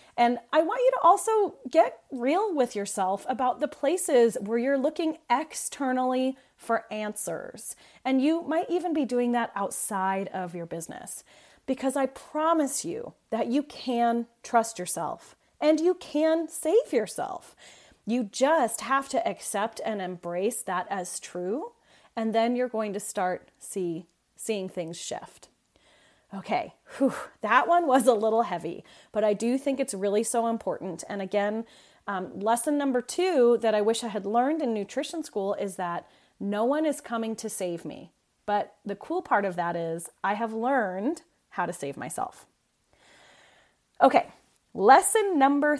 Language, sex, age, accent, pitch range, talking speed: English, female, 30-49, American, 205-295 Hz, 155 wpm